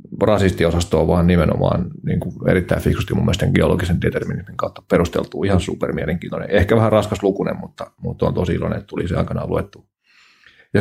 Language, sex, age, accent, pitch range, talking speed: Finnish, male, 30-49, native, 85-95 Hz, 180 wpm